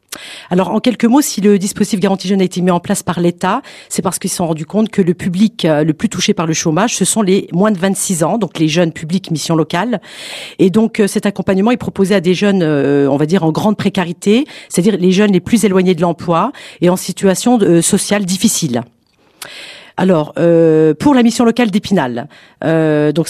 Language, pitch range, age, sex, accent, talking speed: French, 170-220 Hz, 50-69, female, French, 210 wpm